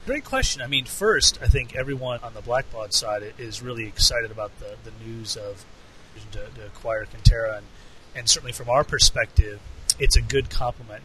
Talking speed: 185 wpm